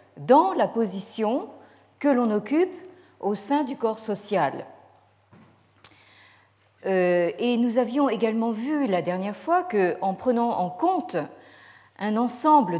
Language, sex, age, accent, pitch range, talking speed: French, female, 50-69, French, 155-235 Hz, 125 wpm